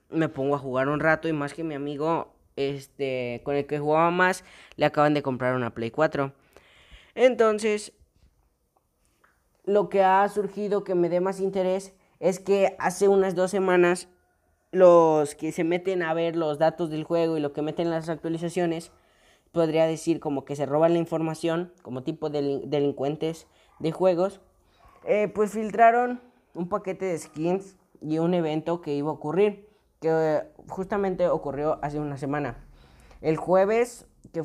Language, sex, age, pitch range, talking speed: Spanish, female, 20-39, 150-190 Hz, 165 wpm